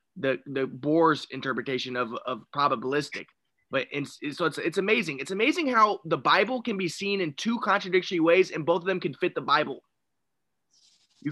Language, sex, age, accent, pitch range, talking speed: English, male, 20-39, American, 155-200 Hz, 180 wpm